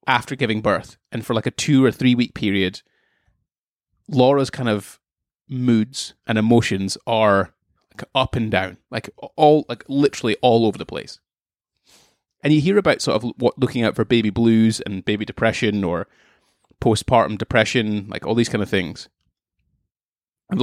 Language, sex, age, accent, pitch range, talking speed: English, male, 20-39, British, 105-120 Hz, 165 wpm